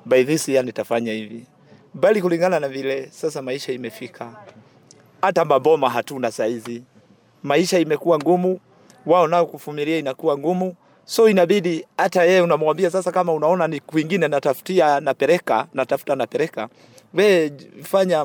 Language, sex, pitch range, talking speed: Swahili, male, 130-175 Hz, 150 wpm